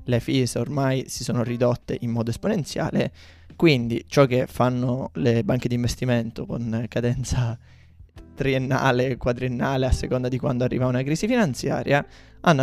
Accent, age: native, 20-39